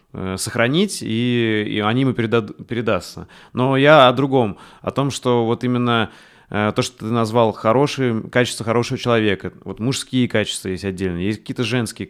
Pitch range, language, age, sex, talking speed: 105-130 Hz, Russian, 30-49, male, 155 wpm